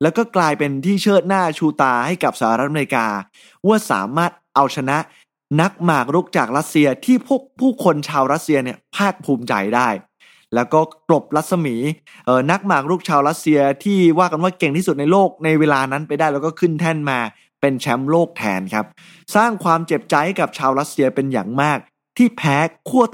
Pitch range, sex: 135-185 Hz, male